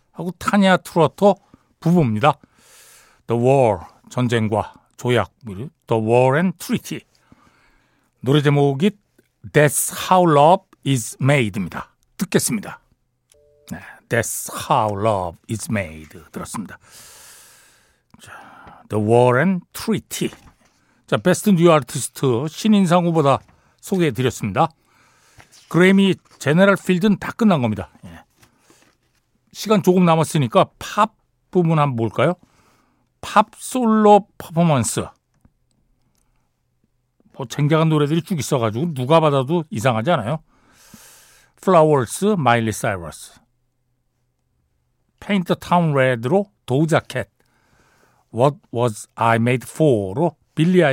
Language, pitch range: Korean, 120-175 Hz